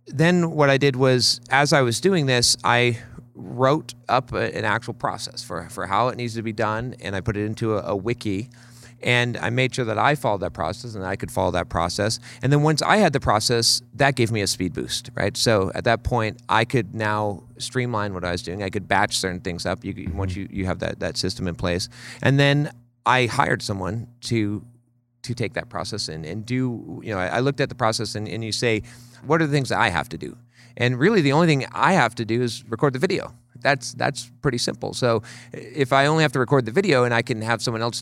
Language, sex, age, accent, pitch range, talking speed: English, male, 30-49, American, 100-125 Hz, 245 wpm